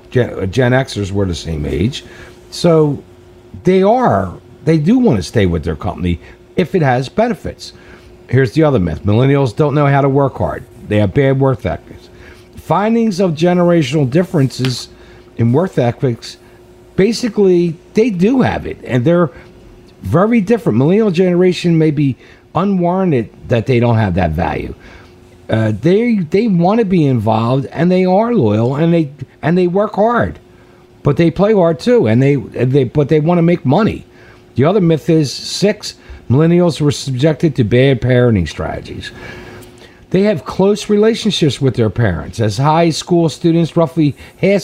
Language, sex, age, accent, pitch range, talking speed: English, male, 50-69, American, 120-180 Hz, 165 wpm